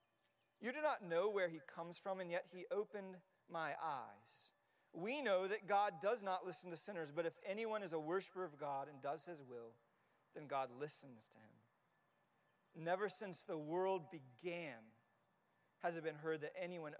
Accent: American